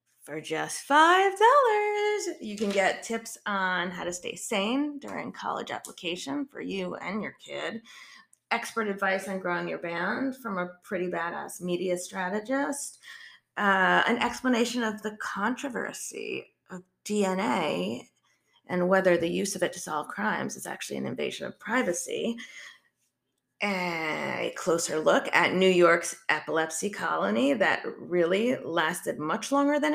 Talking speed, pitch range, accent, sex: 140 wpm, 180-250 Hz, American, female